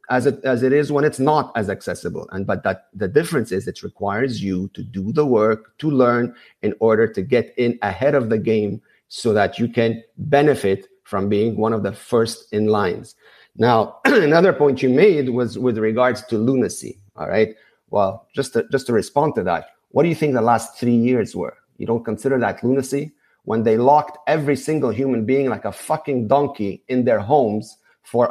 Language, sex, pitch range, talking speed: English, male, 115-145 Hz, 205 wpm